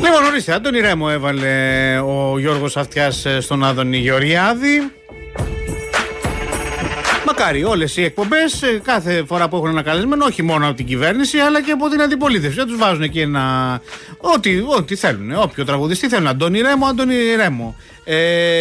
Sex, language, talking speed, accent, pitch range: male, Greek, 140 wpm, native, 150-240 Hz